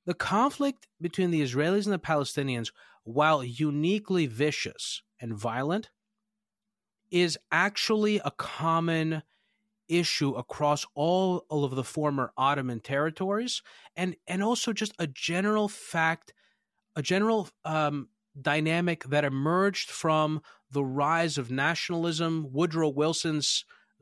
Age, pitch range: 30-49, 145-195 Hz